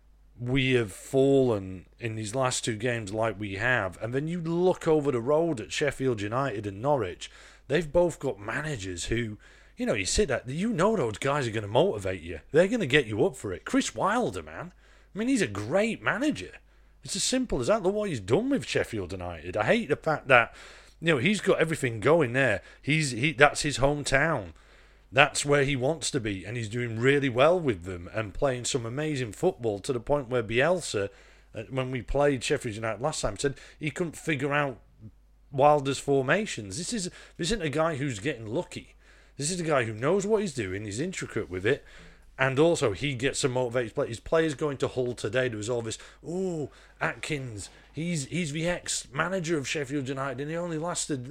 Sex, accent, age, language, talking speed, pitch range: male, British, 30-49, English, 210 wpm, 115-160 Hz